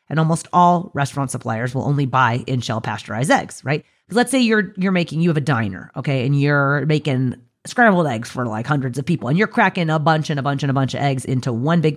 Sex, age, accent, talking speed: female, 30-49, American, 240 wpm